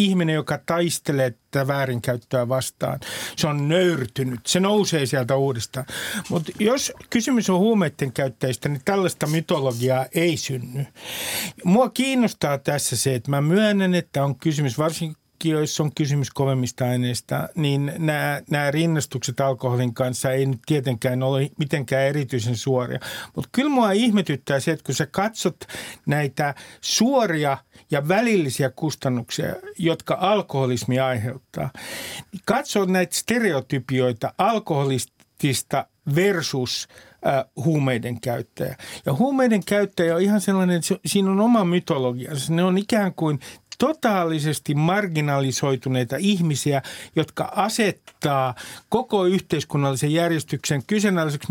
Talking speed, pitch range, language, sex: 120 wpm, 135-185 Hz, Finnish, male